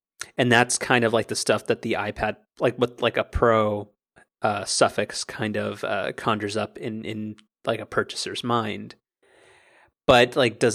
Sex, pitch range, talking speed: male, 110-120 Hz, 175 wpm